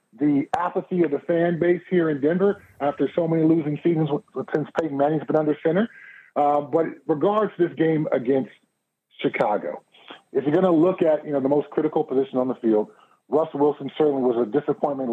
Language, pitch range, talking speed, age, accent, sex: English, 130-160 Hz, 190 wpm, 40-59, American, male